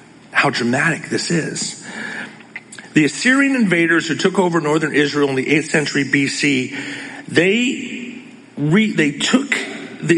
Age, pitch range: 40-59, 130-185 Hz